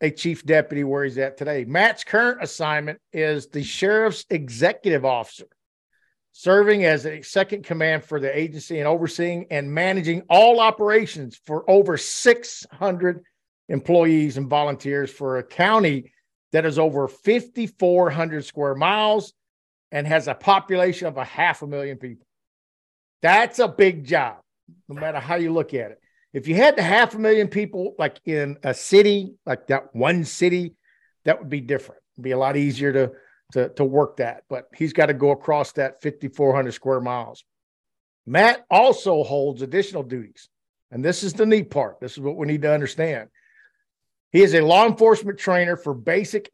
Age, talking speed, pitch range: 50-69, 170 wpm, 145-190 Hz